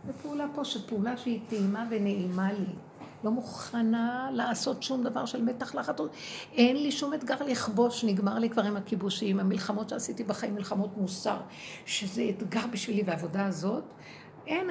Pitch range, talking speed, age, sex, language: 195-260 Hz, 145 wpm, 60-79, female, Hebrew